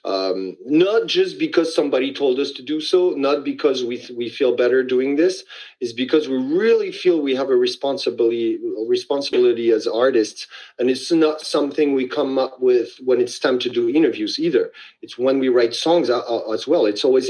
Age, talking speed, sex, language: 40-59, 195 wpm, male, English